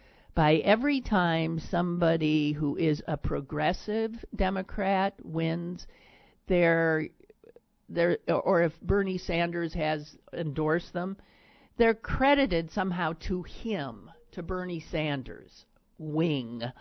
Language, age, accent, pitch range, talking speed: English, 50-69, American, 150-205 Hz, 95 wpm